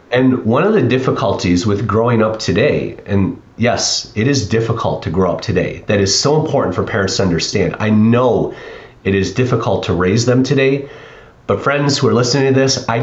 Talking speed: 200 wpm